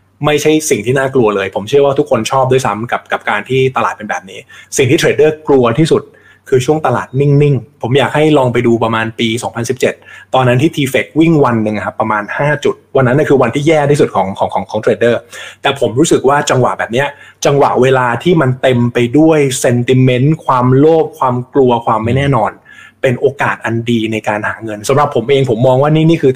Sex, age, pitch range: male, 20-39, 115-145 Hz